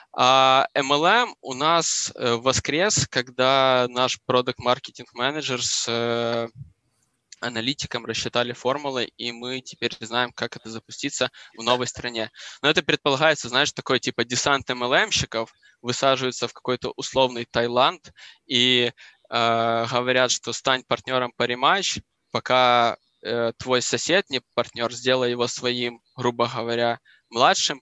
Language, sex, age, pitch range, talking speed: Russian, male, 20-39, 120-135 Hz, 120 wpm